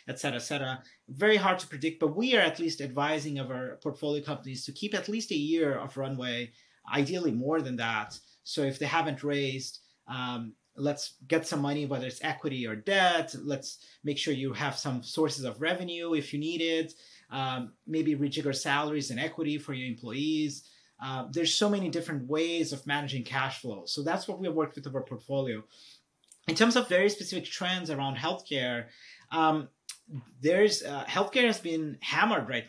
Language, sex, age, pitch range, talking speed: English, male, 30-49, 130-160 Hz, 185 wpm